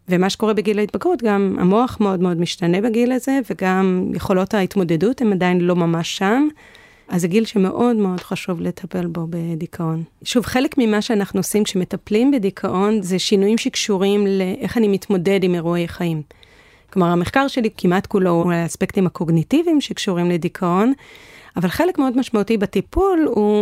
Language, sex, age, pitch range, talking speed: Hebrew, female, 30-49, 180-215 Hz, 150 wpm